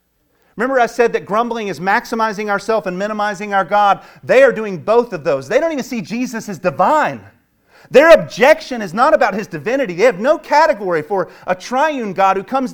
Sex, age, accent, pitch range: male, 40-59, American, 175-225 Hz